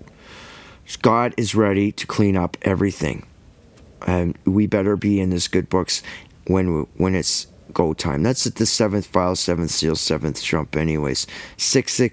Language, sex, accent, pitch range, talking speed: English, male, American, 90-110 Hz, 160 wpm